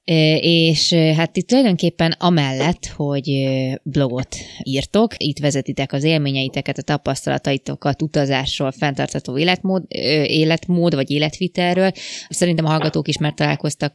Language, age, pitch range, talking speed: Hungarian, 20-39, 145-170 Hz, 110 wpm